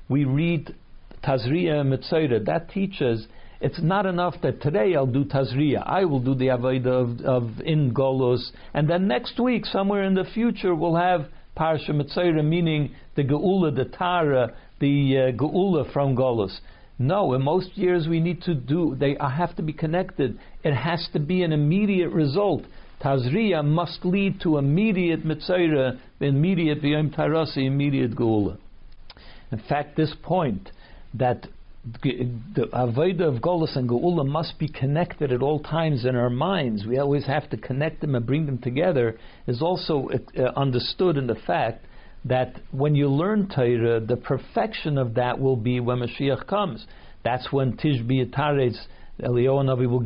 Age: 60-79